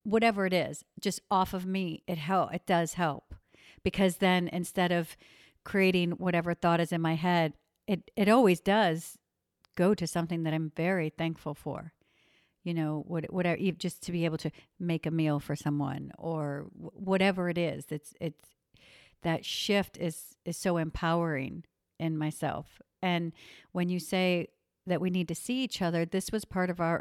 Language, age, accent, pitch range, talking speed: English, 50-69, American, 165-195 Hz, 175 wpm